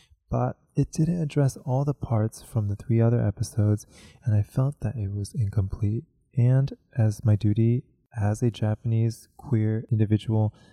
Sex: male